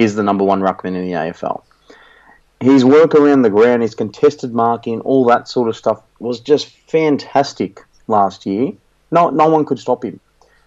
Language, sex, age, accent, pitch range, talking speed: English, male, 30-49, Australian, 105-130 Hz, 180 wpm